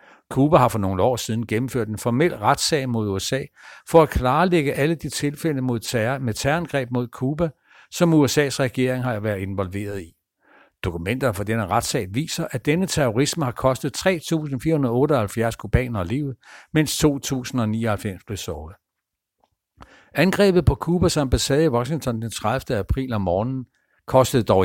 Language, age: Danish, 60-79